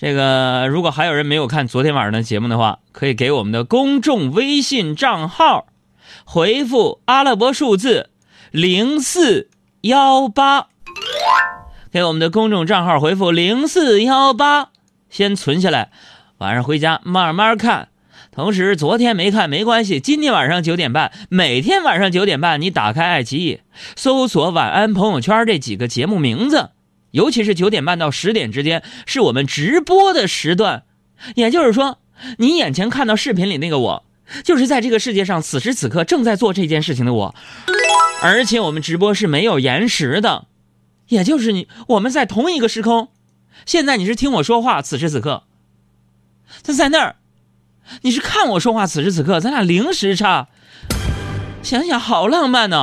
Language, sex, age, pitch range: Chinese, male, 30-49, 145-240 Hz